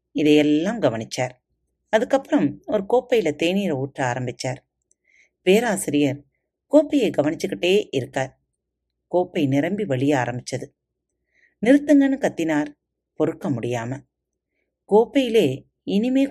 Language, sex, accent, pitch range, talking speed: Tamil, female, native, 135-225 Hz, 85 wpm